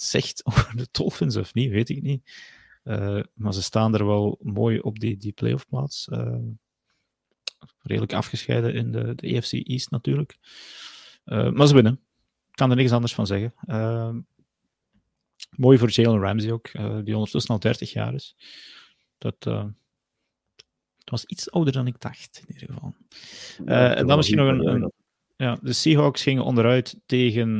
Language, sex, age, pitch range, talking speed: Dutch, male, 30-49, 105-130 Hz, 170 wpm